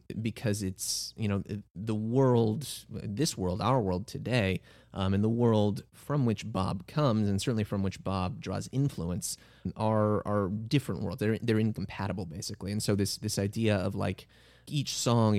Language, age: English, 30-49